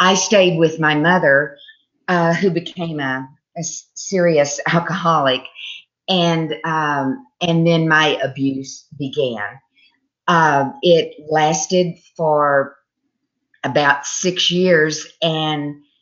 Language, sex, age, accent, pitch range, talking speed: English, female, 50-69, American, 140-170 Hz, 100 wpm